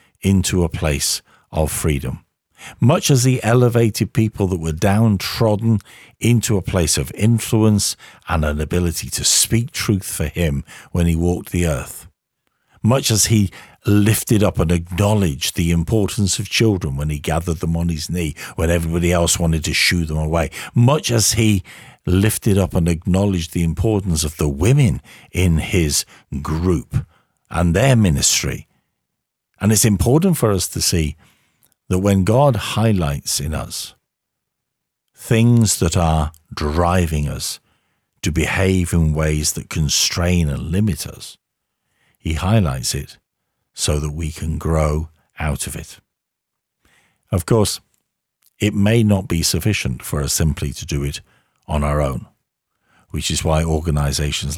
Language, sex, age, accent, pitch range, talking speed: English, male, 50-69, British, 80-105 Hz, 145 wpm